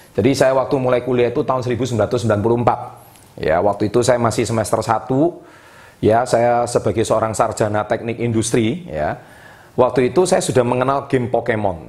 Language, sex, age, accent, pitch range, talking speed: Indonesian, male, 30-49, native, 110-135 Hz, 150 wpm